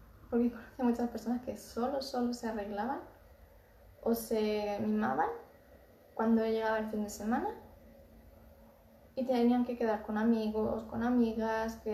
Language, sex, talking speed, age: Spanish, female, 140 wpm, 20-39